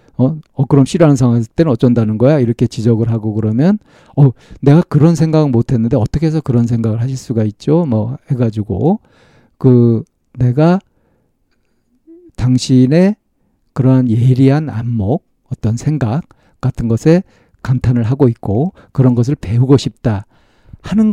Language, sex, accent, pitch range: Korean, male, native, 115-150 Hz